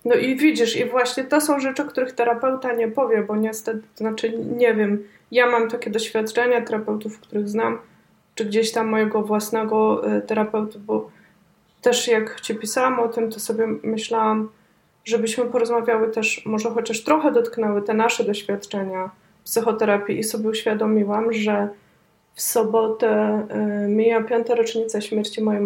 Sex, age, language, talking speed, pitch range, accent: female, 20-39, Polish, 155 wpm, 215-235 Hz, native